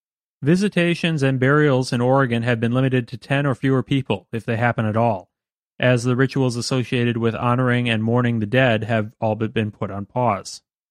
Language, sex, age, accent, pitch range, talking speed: English, male, 30-49, American, 115-140 Hz, 195 wpm